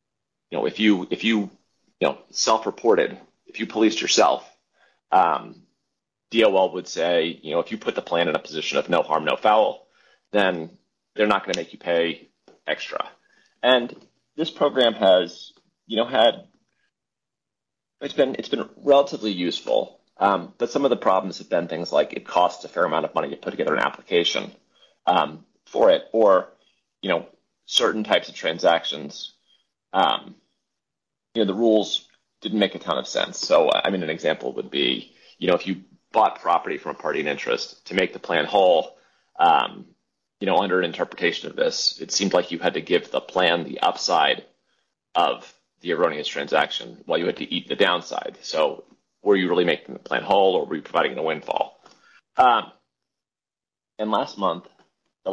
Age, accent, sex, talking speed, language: 30-49, American, male, 185 wpm, English